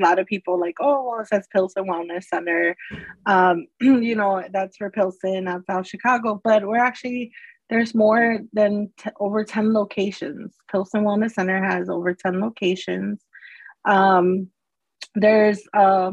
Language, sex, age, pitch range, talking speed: English, female, 20-39, 195-230 Hz, 140 wpm